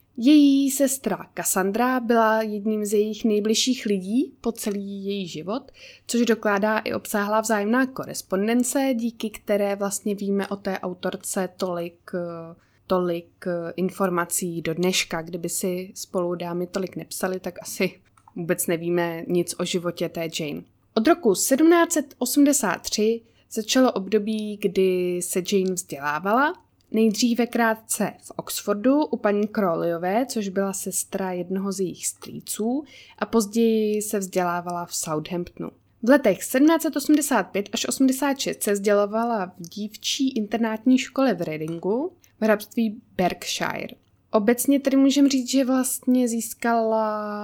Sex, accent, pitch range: female, native, 185-235 Hz